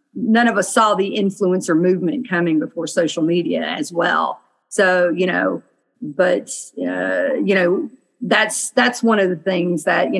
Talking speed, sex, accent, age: 165 wpm, female, American, 40-59